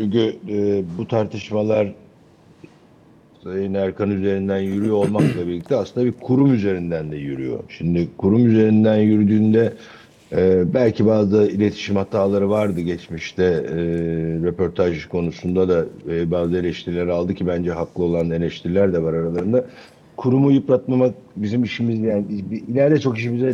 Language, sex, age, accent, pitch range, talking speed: Turkish, male, 60-79, native, 95-125 Hz, 130 wpm